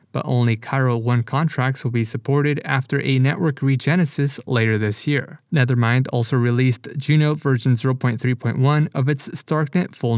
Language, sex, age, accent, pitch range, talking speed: English, male, 20-39, American, 120-145 Hz, 145 wpm